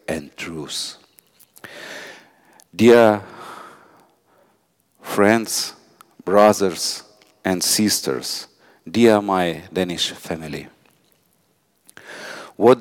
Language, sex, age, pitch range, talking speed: Danish, male, 50-69, 95-115 Hz, 55 wpm